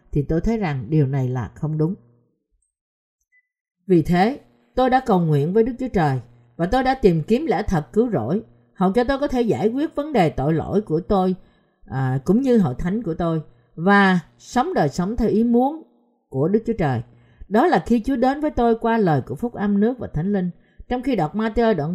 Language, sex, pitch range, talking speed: Vietnamese, female, 150-230 Hz, 220 wpm